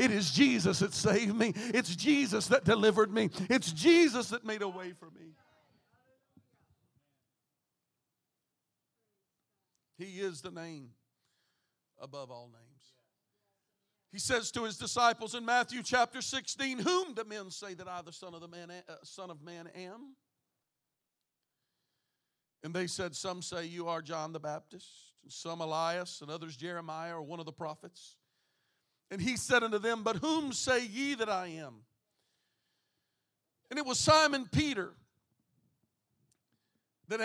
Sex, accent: male, American